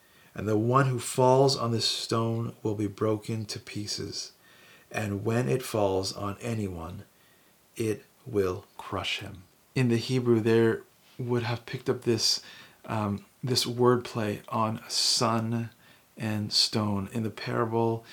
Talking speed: 140 wpm